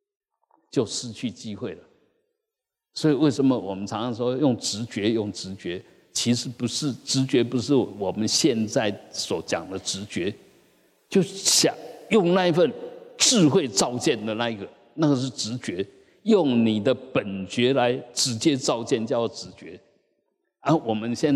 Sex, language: male, Chinese